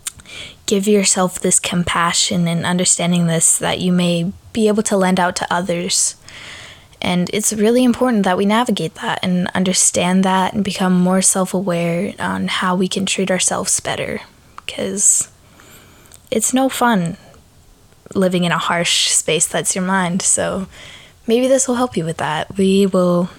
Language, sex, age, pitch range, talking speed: English, female, 20-39, 170-205 Hz, 155 wpm